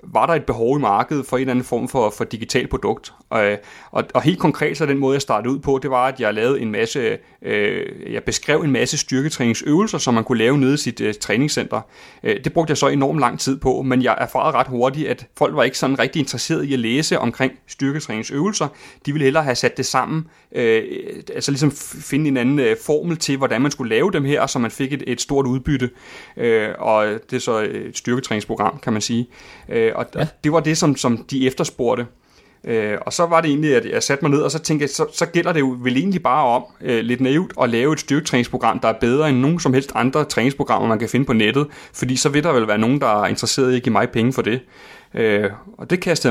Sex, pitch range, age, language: male, 120-150 Hz, 30-49, Danish